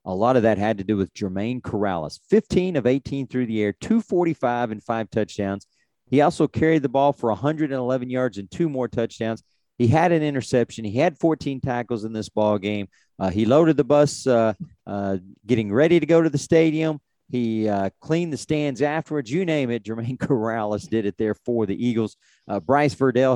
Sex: male